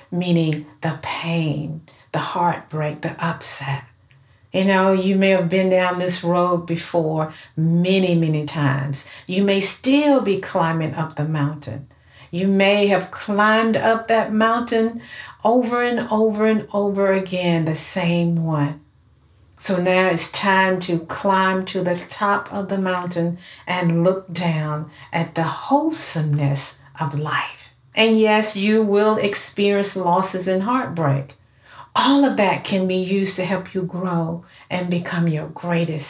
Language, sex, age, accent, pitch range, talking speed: English, female, 60-79, American, 160-210 Hz, 145 wpm